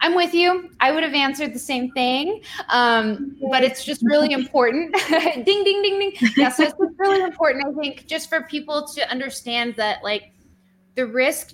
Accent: American